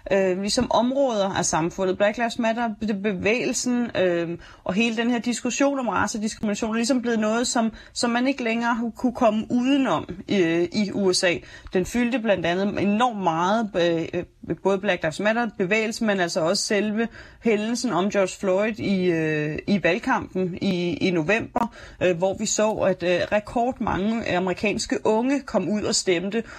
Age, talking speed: 30-49, 160 wpm